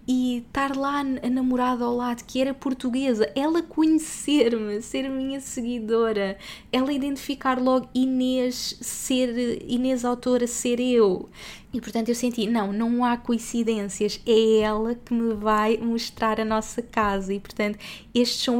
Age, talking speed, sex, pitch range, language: 20-39, 145 wpm, female, 215-255 Hz, Portuguese